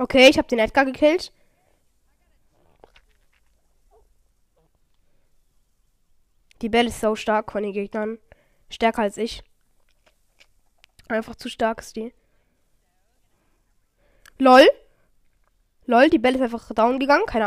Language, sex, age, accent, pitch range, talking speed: German, female, 10-29, German, 230-320 Hz, 105 wpm